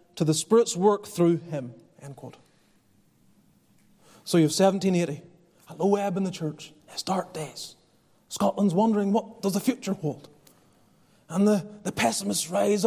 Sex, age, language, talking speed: male, 30-49, English, 155 wpm